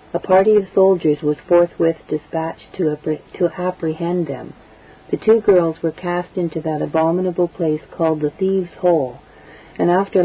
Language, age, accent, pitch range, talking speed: English, 50-69, American, 155-180 Hz, 150 wpm